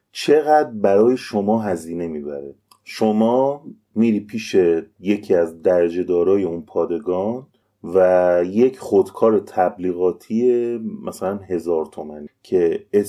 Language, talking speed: Persian, 100 wpm